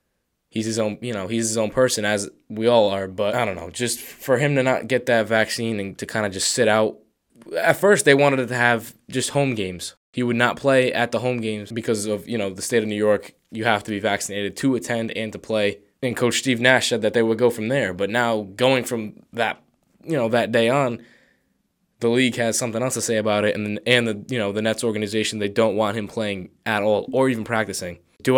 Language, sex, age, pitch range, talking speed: English, male, 10-29, 105-120 Hz, 250 wpm